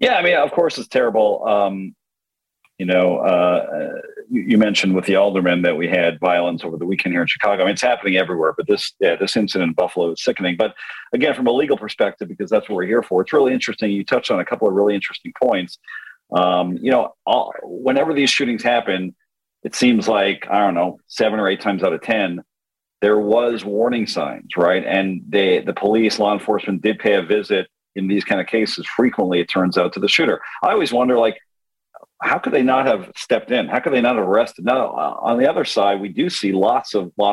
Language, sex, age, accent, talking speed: English, male, 40-59, American, 225 wpm